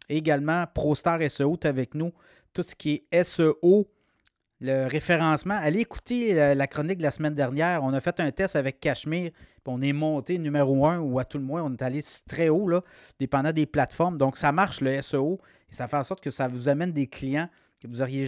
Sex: male